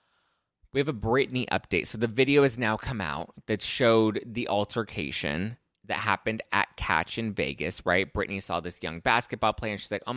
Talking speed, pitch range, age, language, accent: 195 wpm, 90-115 Hz, 20-39, English, American